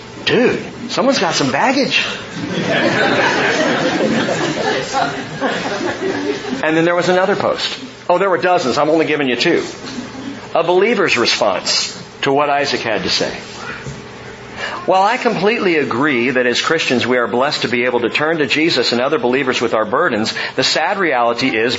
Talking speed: 155 wpm